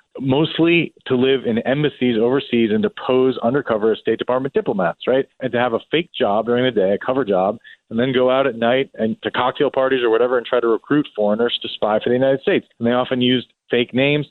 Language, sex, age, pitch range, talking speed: English, male, 30-49, 115-150 Hz, 235 wpm